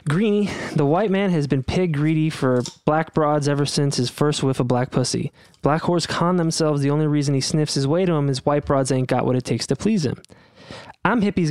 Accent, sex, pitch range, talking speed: American, male, 125-155 Hz, 235 wpm